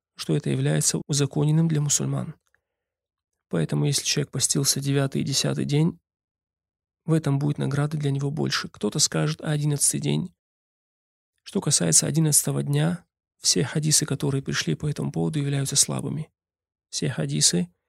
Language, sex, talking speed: Russian, male, 135 wpm